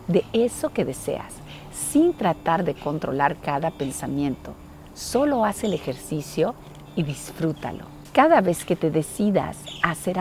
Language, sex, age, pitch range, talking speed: Spanish, female, 50-69, 145-210 Hz, 135 wpm